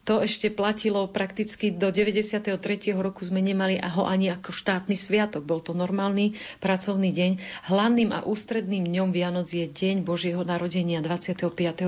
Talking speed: 145 wpm